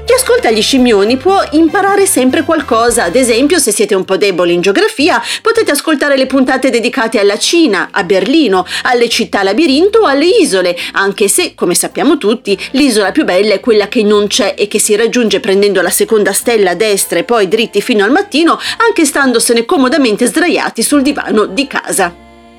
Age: 40-59